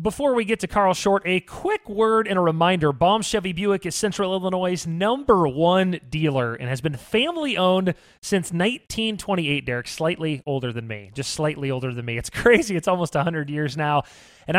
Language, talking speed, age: English, 185 wpm, 30-49